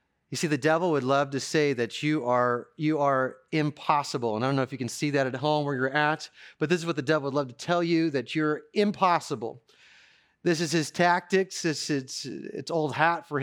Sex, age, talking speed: male, 30-49, 230 wpm